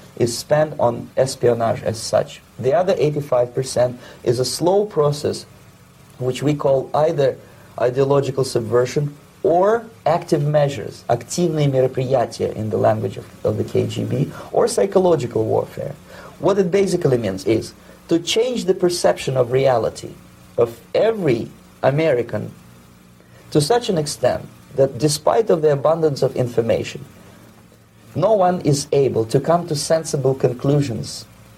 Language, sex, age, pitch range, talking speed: English, male, 40-59, 120-155 Hz, 125 wpm